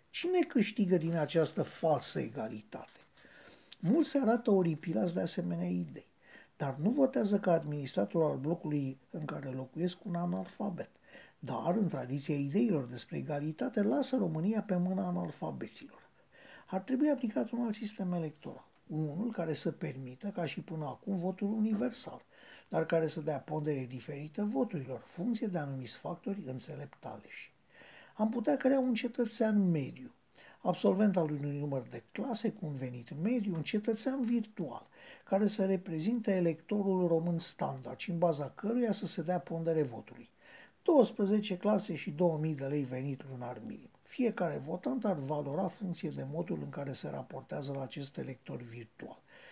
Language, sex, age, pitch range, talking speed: Romanian, male, 50-69, 145-210 Hz, 150 wpm